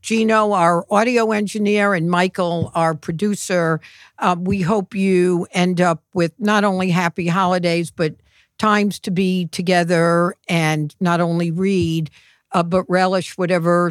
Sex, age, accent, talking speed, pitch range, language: female, 60-79, American, 140 wpm, 160-195 Hz, English